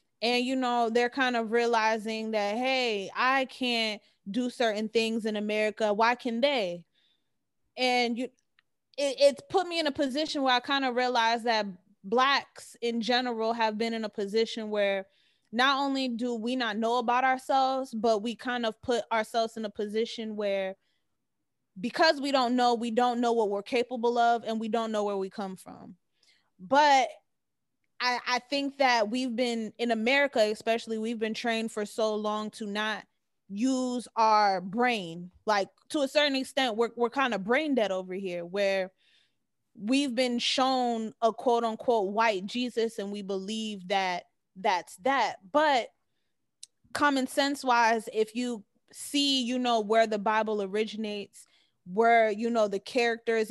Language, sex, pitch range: English, female, 215-250 Hz